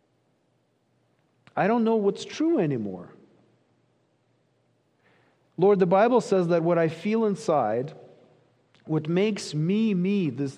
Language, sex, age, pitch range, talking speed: English, male, 50-69, 155-225 Hz, 115 wpm